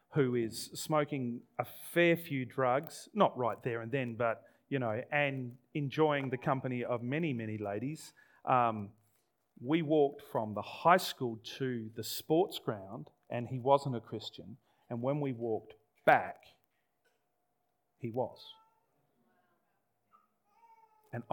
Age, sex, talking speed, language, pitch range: 40-59, male, 130 wpm, English, 120-165 Hz